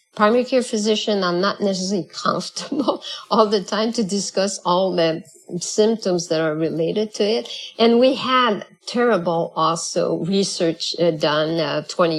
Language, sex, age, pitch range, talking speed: English, female, 50-69, 165-205 Hz, 140 wpm